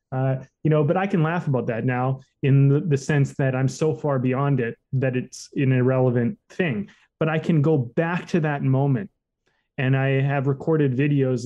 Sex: male